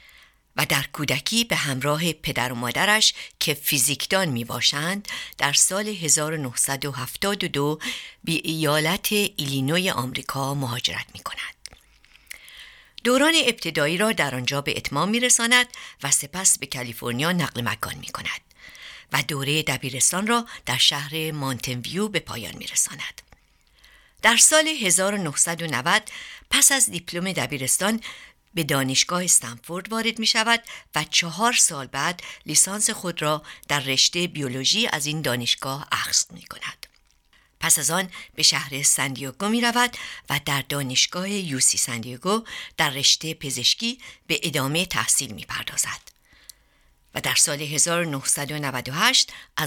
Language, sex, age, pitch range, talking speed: Persian, female, 60-79, 135-190 Hz, 120 wpm